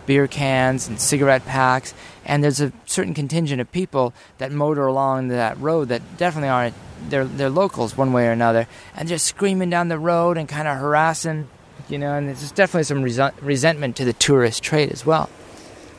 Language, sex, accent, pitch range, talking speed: English, male, American, 115-140 Hz, 190 wpm